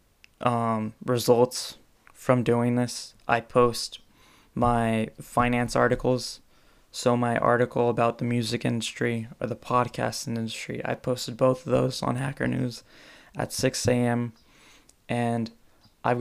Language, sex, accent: English, male, American